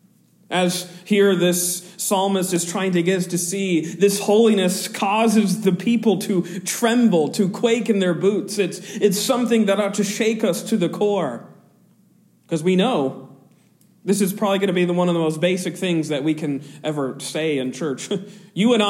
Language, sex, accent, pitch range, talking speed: English, male, American, 170-210 Hz, 185 wpm